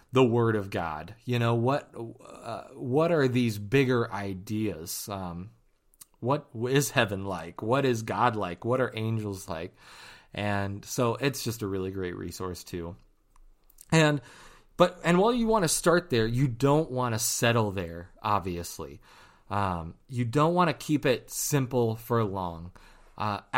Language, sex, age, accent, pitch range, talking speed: English, male, 30-49, American, 100-140 Hz, 160 wpm